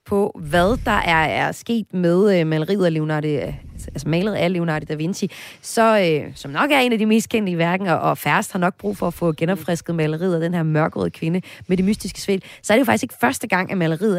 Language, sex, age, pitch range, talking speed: Danish, female, 30-49, 155-205 Hz, 245 wpm